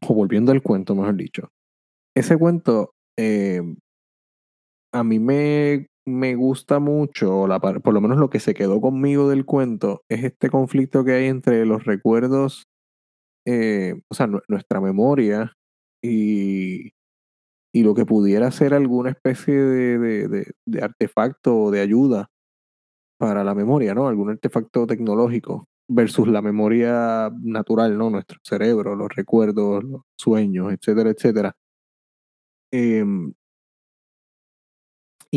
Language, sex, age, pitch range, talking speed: Spanish, male, 30-49, 105-130 Hz, 125 wpm